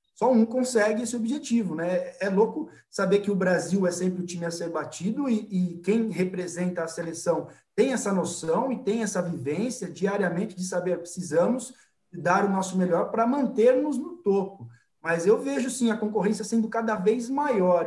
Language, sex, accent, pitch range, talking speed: Portuguese, male, Brazilian, 180-225 Hz, 180 wpm